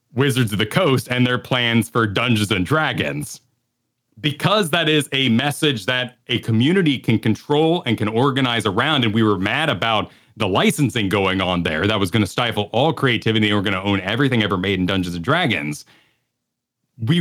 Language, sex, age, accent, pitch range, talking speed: English, male, 40-59, American, 100-130 Hz, 190 wpm